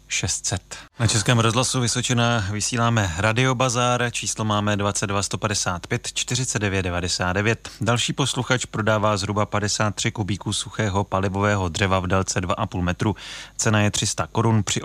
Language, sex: Czech, male